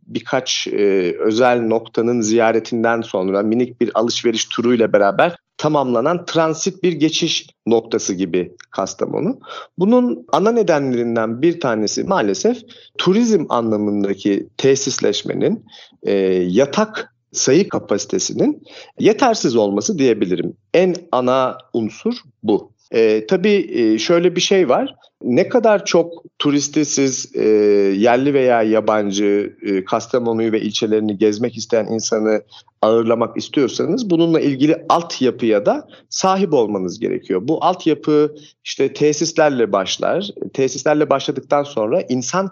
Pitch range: 115-165 Hz